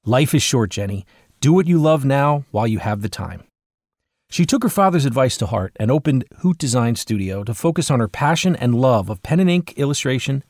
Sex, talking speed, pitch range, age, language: male, 215 wpm, 115-170 Hz, 40-59, English